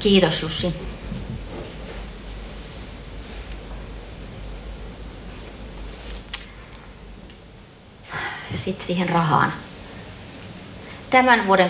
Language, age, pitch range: Finnish, 30-49, 135-190 Hz